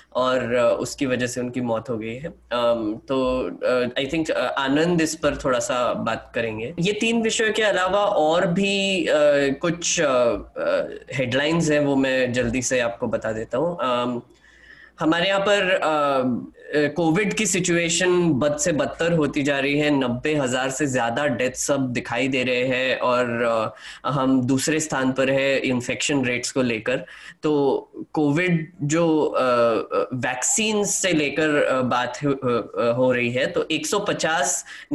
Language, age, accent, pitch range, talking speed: Hindi, 10-29, native, 130-160 Hz, 150 wpm